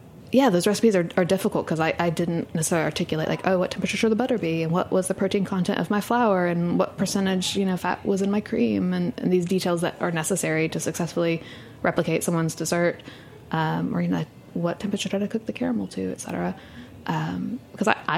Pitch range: 160-185 Hz